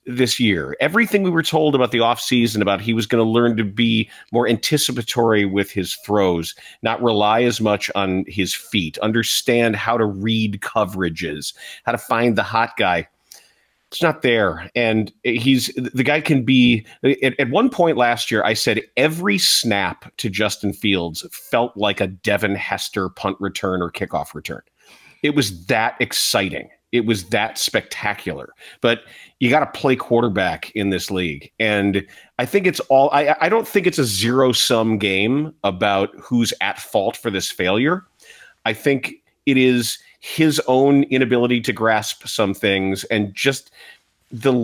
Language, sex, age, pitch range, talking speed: English, male, 40-59, 100-130 Hz, 165 wpm